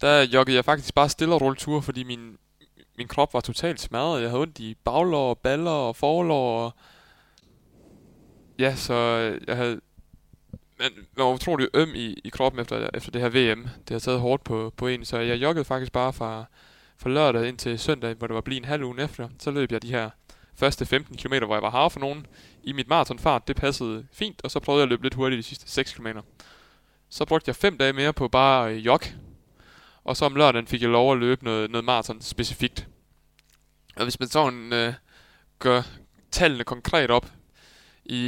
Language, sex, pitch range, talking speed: Danish, male, 115-140 Hz, 200 wpm